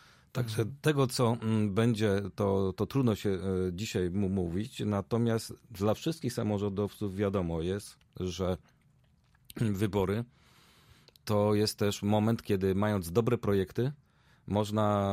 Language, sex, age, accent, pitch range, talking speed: Polish, male, 40-59, native, 95-120 Hz, 105 wpm